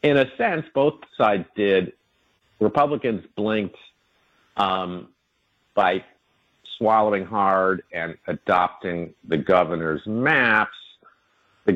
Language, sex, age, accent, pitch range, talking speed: English, male, 50-69, American, 90-115 Hz, 90 wpm